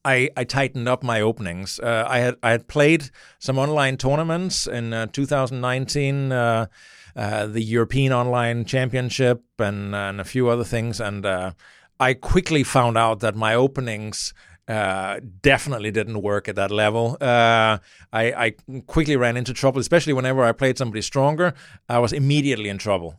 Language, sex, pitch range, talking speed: English, male, 110-140 Hz, 170 wpm